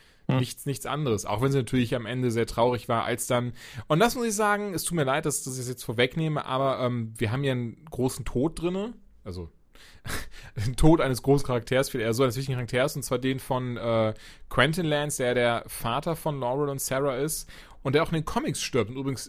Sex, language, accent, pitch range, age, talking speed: male, German, German, 115-140 Hz, 30-49, 230 wpm